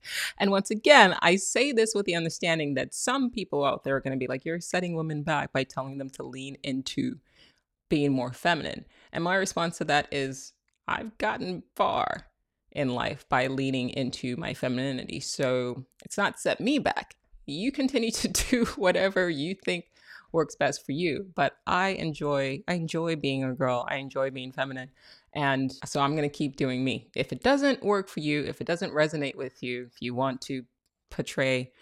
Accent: American